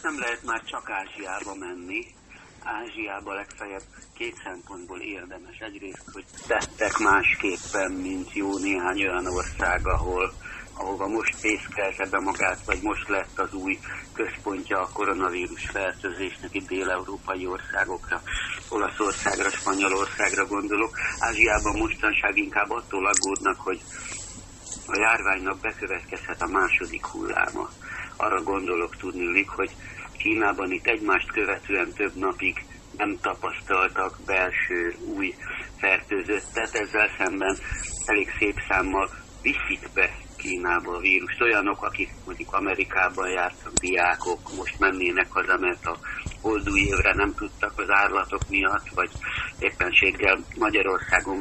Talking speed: 115 wpm